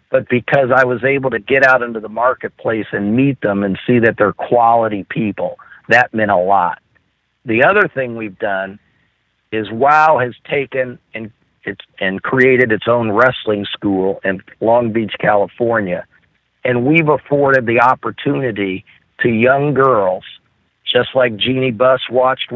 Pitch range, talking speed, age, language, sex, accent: 110-130 Hz, 155 wpm, 50-69, English, male, American